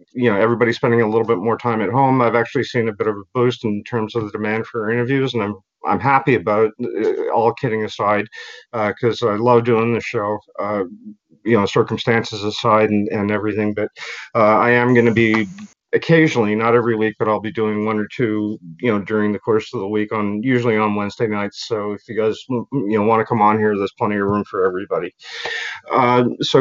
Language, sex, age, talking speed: English, male, 40-59, 225 wpm